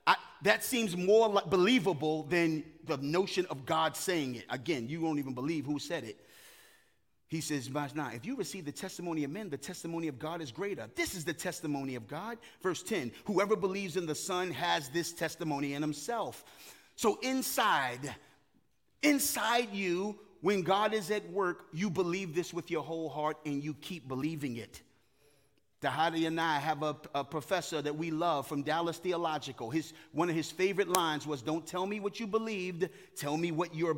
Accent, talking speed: American, 180 wpm